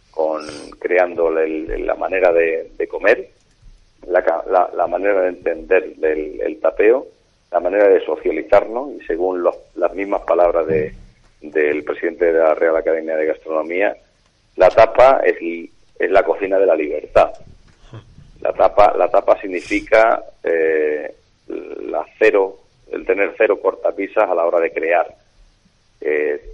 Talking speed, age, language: 125 wpm, 40-59, Spanish